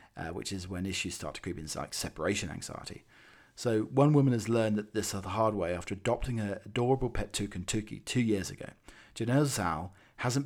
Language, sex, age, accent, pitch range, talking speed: English, male, 40-59, British, 95-115 Hz, 200 wpm